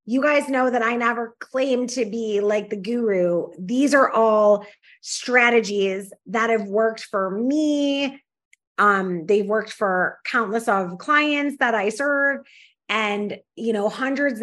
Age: 20-39